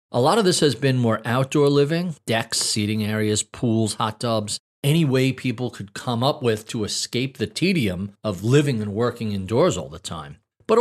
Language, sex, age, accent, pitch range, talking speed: English, male, 40-59, American, 110-155 Hz, 195 wpm